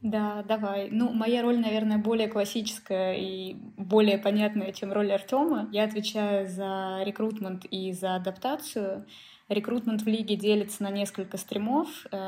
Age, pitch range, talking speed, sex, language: 20-39, 185-215 Hz, 135 wpm, female, Russian